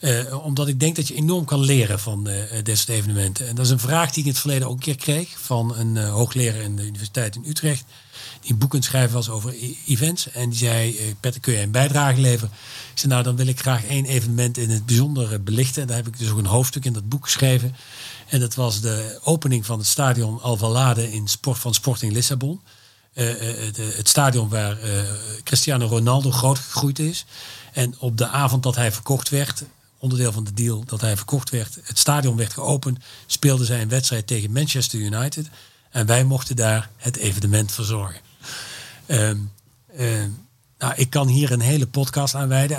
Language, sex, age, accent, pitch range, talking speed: Dutch, male, 40-59, Dutch, 115-135 Hz, 215 wpm